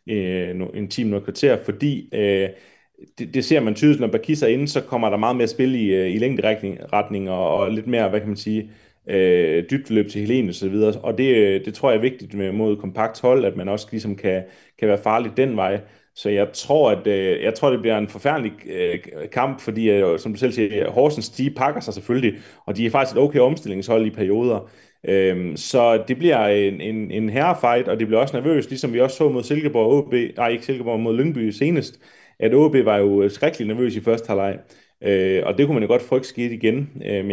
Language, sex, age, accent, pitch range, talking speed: Danish, male, 30-49, native, 105-130 Hz, 220 wpm